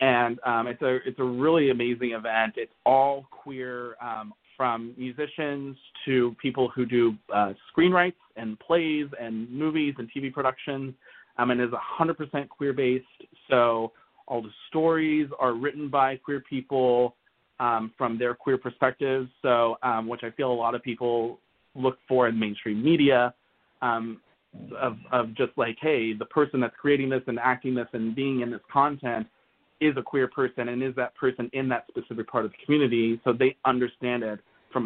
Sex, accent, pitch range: male, American, 115-135 Hz